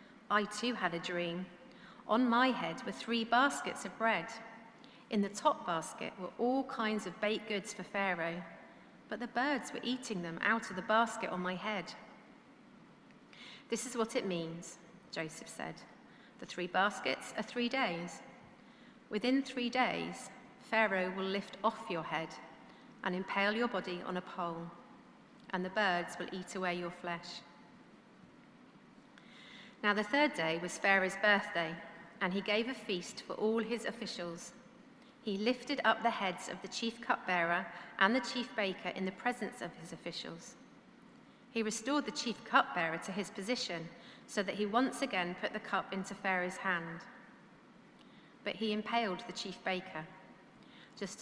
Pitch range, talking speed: 180-240 Hz, 160 wpm